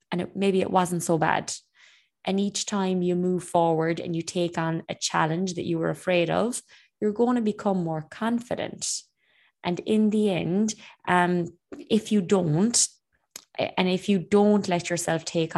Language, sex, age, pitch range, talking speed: English, female, 20-39, 160-195 Hz, 175 wpm